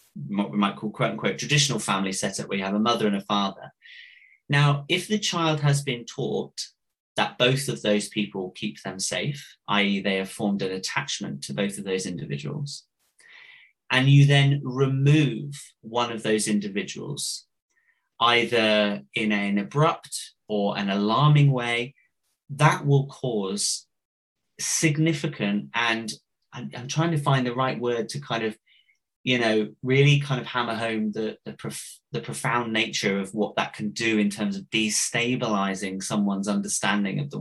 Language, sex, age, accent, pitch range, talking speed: English, male, 30-49, British, 105-140 Hz, 160 wpm